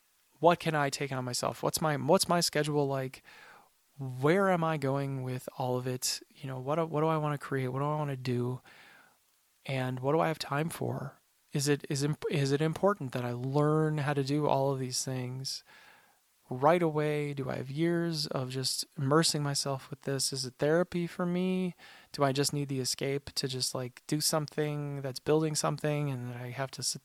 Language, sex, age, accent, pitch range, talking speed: English, male, 20-39, American, 130-150 Hz, 215 wpm